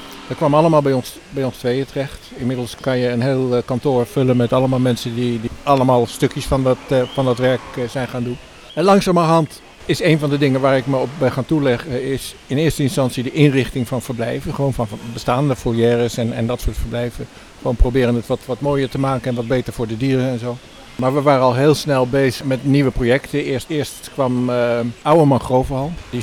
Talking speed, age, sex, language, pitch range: 215 wpm, 60-79, male, Dutch, 120-145 Hz